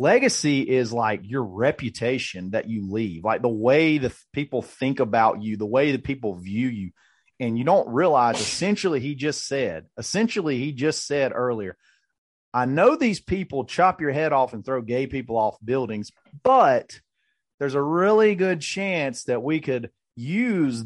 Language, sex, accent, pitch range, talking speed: English, male, American, 115-150 Hz, 170 wpm